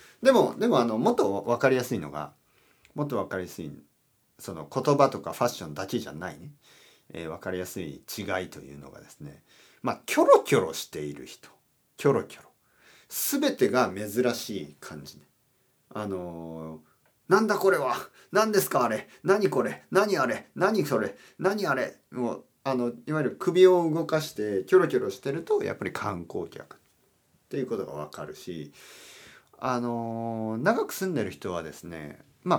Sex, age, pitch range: male, 40-59, 105-165 Hz